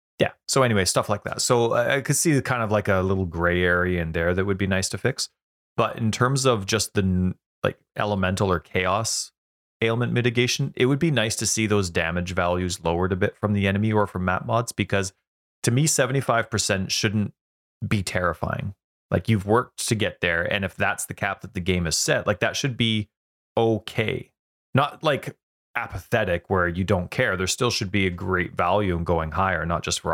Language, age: English, 30-49